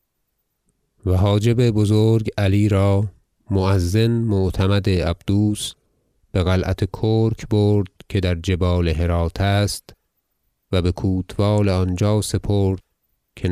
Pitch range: 90-105 Hz